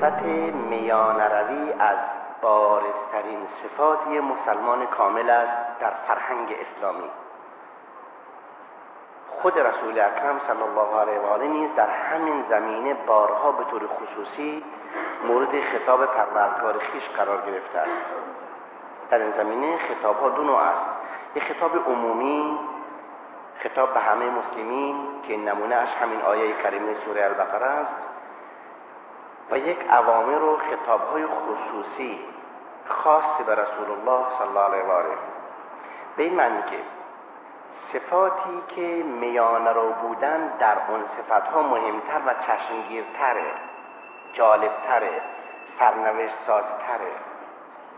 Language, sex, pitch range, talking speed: Persian, male, 105-150 Hz, 115 wpm